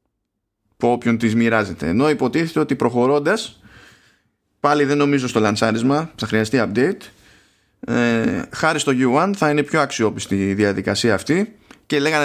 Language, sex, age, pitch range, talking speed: Greek, male, 20-39, 105-145 Hz, 140 wpm